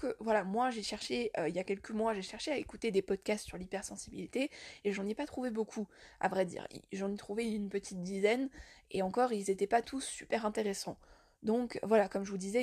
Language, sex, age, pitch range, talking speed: French, female, 20-39, 200-235 Hz, 225 wpm